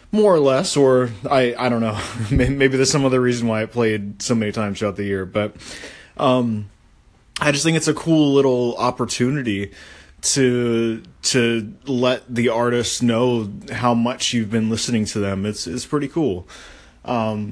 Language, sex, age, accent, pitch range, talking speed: English, male, 20-39, American, 110-140 Hz, 170 wpm